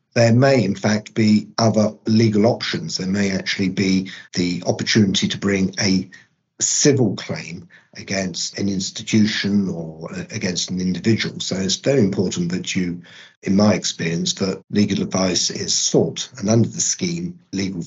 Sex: male